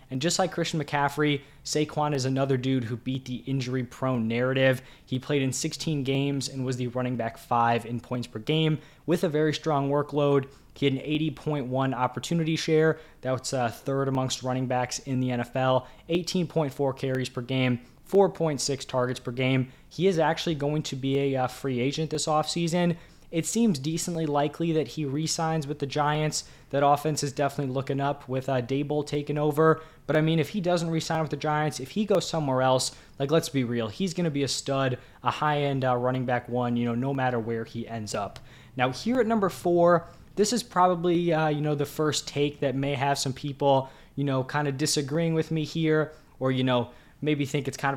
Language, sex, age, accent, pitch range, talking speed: English, male, 20-39, American, 130-155 Hz, 200 wpm